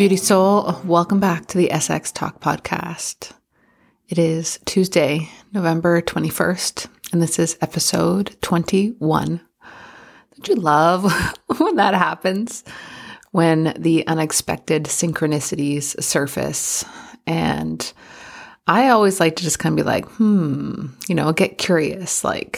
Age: 30-49